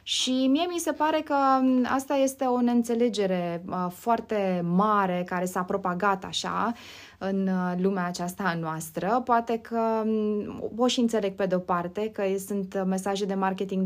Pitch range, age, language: 200-255 Hz, 20-39, Romanian